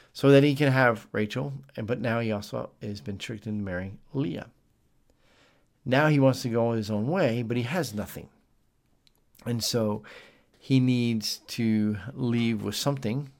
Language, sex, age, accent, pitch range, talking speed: English, male, 50-69, American, 105-125 Hz, 160 wpm